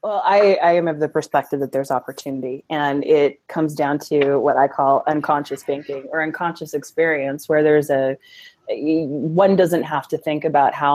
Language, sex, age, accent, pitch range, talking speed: English, female, 20-39, American, 140-160 Hz, 180 wpm